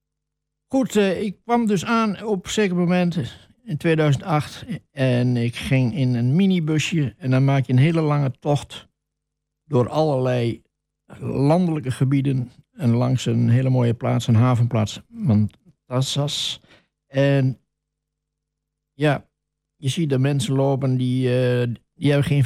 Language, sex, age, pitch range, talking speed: Dutch, male, 60-79, 125-155 Hz, 130 wpm